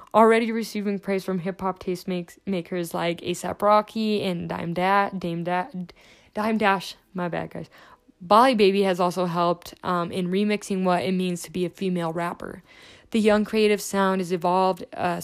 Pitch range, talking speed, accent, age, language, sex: 180-210 Hz, 175 wpm, American, 10-29, English, female